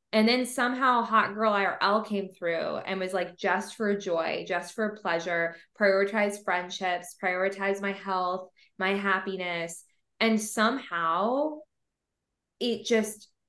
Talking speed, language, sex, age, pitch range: 125 wpm, English, female, 20-39, 180-215 Hz